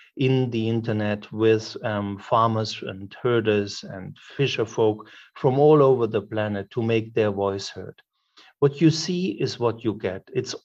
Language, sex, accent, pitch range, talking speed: English, male, German, 110-140 Hz, 165 wpm